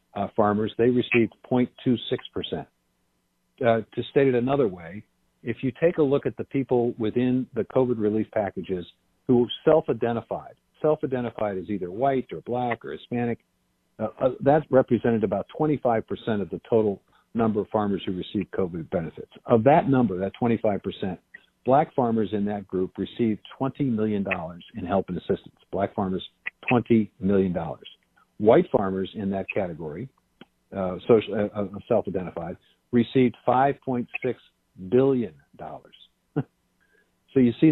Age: 50-69